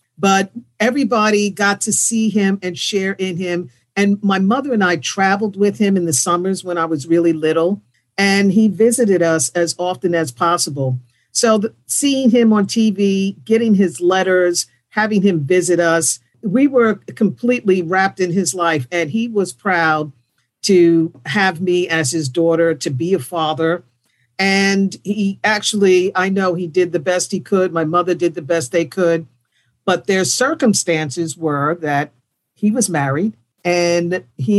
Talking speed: 165 wpm